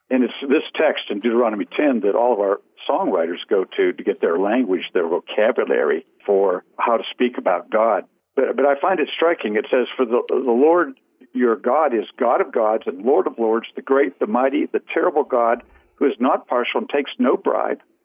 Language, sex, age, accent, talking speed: English, male, 60-79, American, 210 wpm